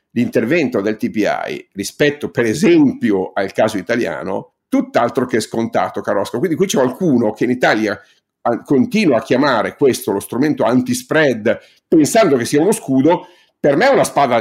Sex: male